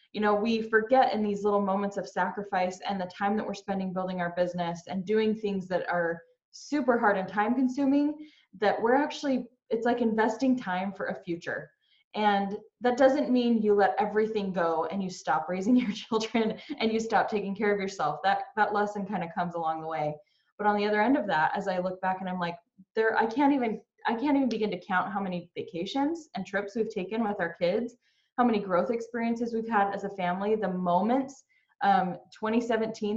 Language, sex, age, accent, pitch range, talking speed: English, female, 10-29, American, 190-235 Hz, 210 wpm